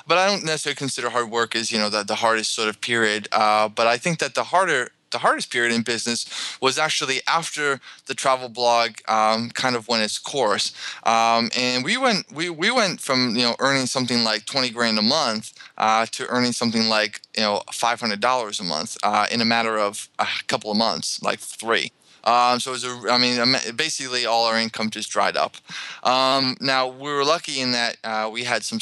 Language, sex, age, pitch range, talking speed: English, male, 20-39, 110-125 Hz, 220 wpm